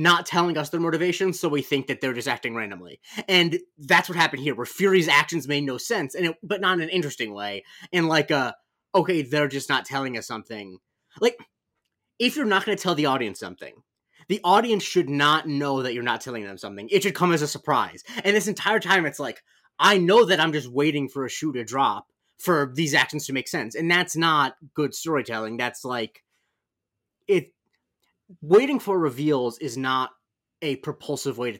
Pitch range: 120-165 Hz